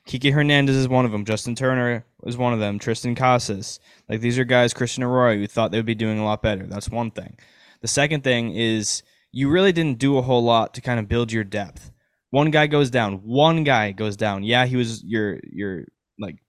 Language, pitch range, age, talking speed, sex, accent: English, 110-140 Hz, 10-29, 225 wpm, male, American